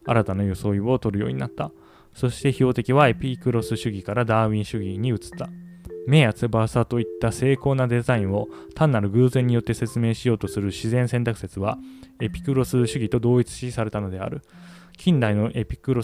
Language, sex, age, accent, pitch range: Japanese, male, 20-39, native, 100-130 Hz